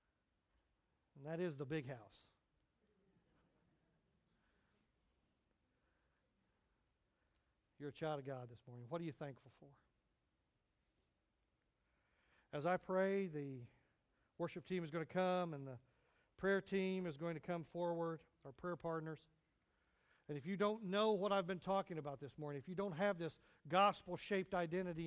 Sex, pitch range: male, 135-180 Hz